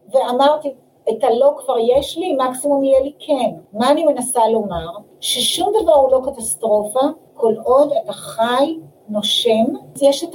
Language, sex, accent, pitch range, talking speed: Hebrew, female, native, 225-300 Hz, 145 wpm